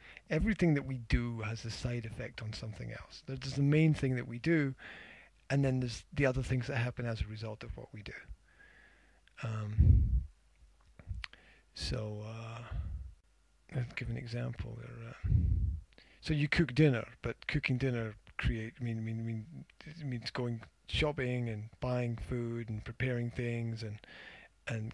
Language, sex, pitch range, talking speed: English, male, 95-130 Hz, 165 wpm